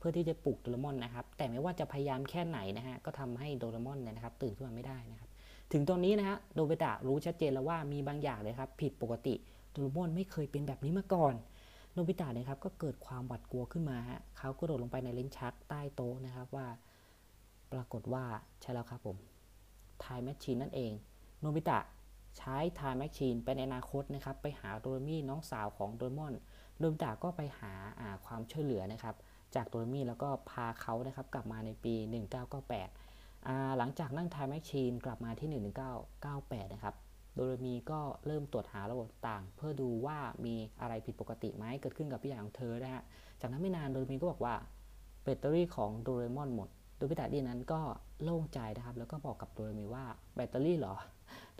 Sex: female